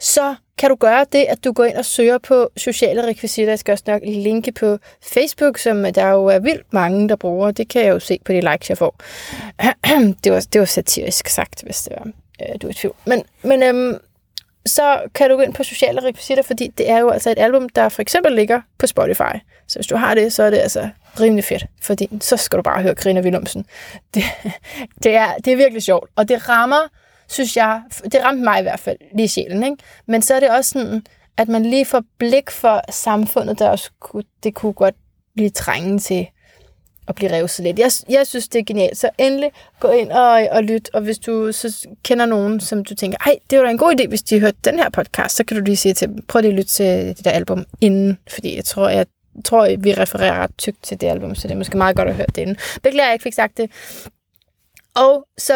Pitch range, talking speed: 210-255 Hz, 240 wpm